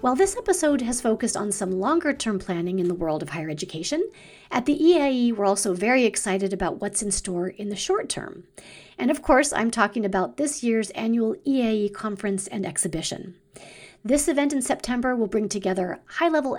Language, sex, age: English, female, 40-59